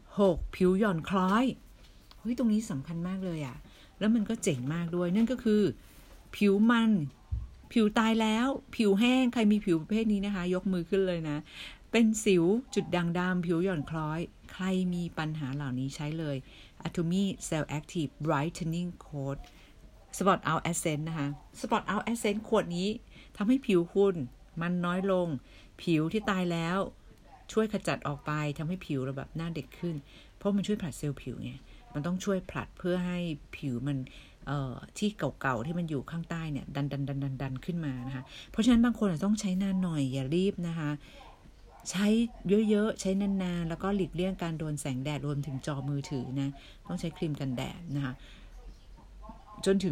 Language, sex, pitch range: Thai, female, 145-195 Hz